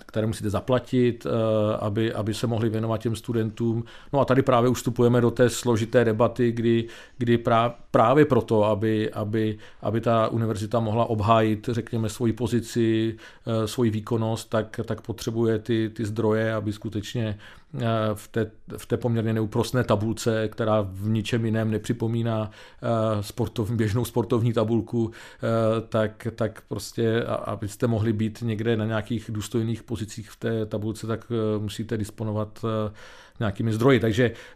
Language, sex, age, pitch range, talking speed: Czech, male, 40-59, 105-115 Hz, 140 wpm